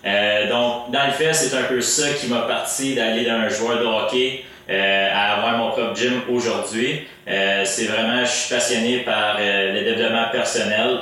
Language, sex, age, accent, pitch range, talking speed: French, male, 30-49, Canadian, 100-120 Hz, 190 wpm